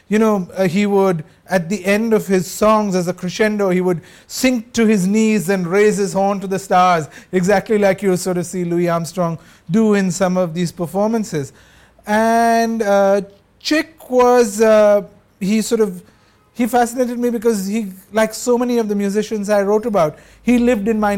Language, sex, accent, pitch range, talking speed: English, male, Indian, 180-215 Hz, 190 wpm